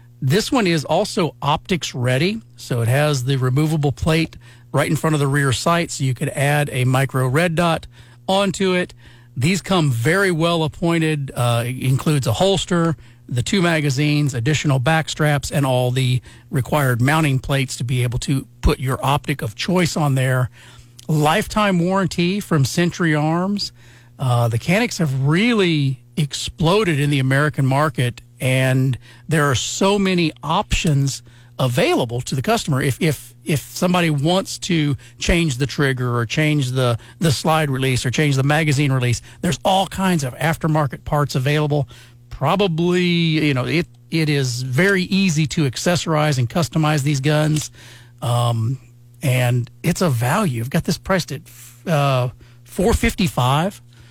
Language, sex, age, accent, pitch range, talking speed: English, male, 40-59, American, 125-165 Hz, 155 wpm